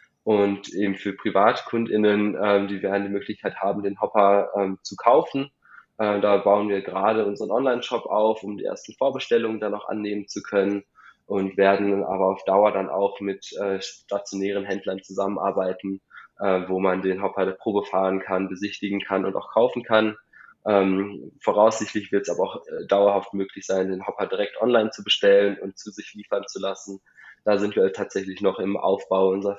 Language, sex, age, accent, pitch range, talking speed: German, male, 20-39, German, 100-105 Hz, 180 wpm